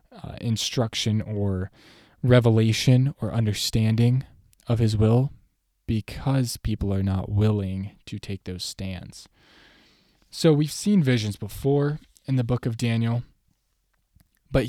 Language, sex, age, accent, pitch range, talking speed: English, male, 10-29, American, 100-125 Hz, 120 wpm